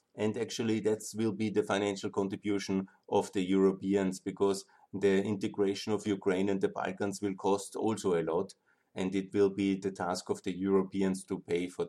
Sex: male